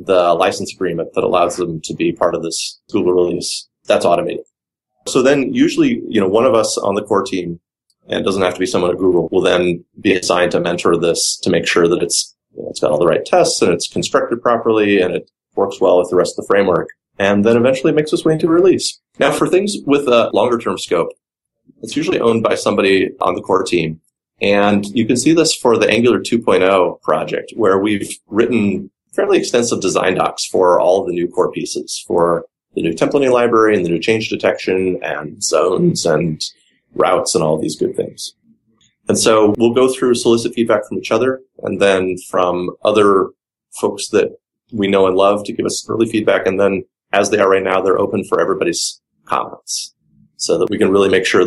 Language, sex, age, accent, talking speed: English, male, 30-49, American, 210 wpm